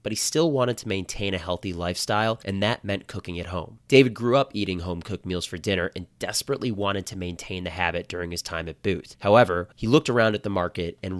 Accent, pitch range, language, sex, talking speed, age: American, 90-110 Hz, English, male, 230 wpm, 30-49